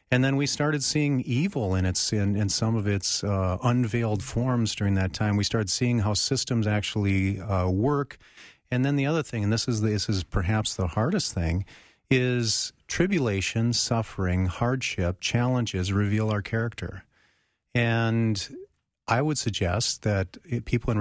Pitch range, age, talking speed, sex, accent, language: 100-120 Hz, 40-59, 165 wpm, male, American, English